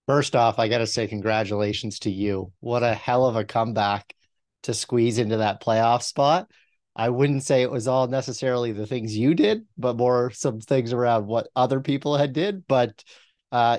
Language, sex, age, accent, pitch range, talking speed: English, male, 30-49, American, 105-125 Hz, 190 wpm